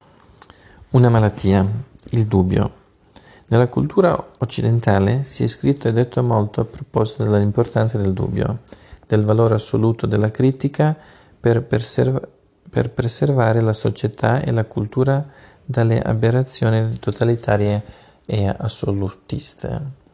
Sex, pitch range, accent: male, 105-125 Hz, native